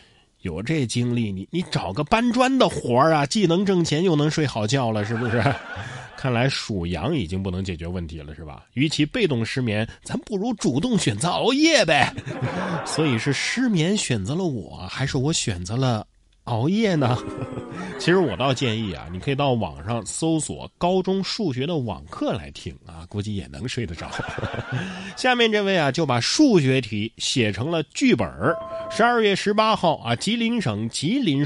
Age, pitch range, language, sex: 30-49, 110-165 Hz, Chinese, male